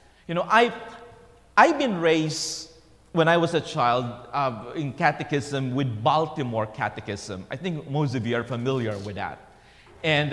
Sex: male